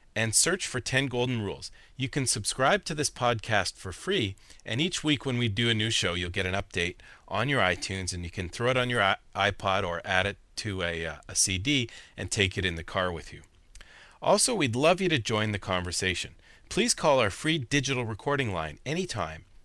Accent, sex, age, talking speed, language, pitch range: American, male, 40-59, 215 wpm, English, 95-130 Hz